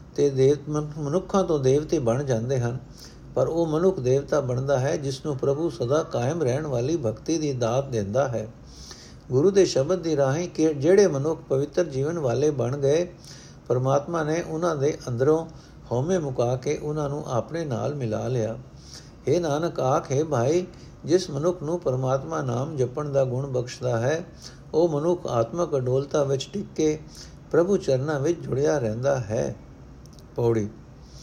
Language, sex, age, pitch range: Punjabi, male, 60-79, 135-175 Hz